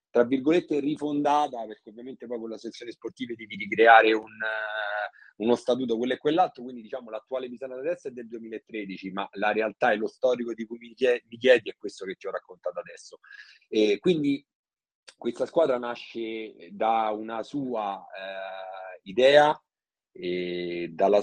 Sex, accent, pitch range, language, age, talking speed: male, native, 100-130 Hz, Italian, 30-49, 160 wpm